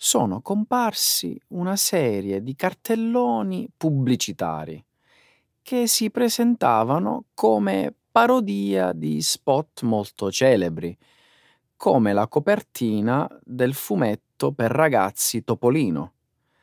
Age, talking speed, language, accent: 30-49, 85 wpm, Italian, native